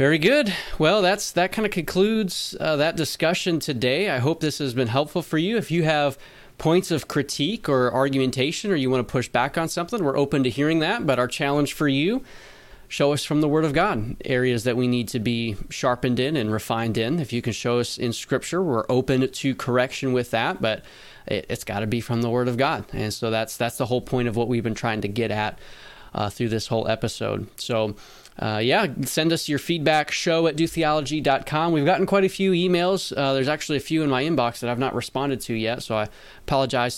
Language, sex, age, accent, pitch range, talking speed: English, male, 20-39, American, 120-155 Hz, 230 wpm